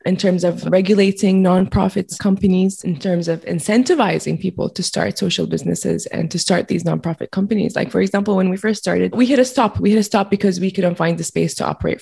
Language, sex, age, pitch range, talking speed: English, female, 20-39, 175-210 Hz, 220 wpm